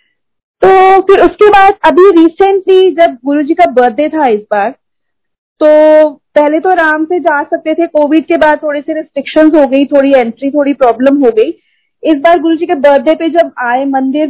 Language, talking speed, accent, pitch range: Hindi, 195 wpm, native, 260-330 Hz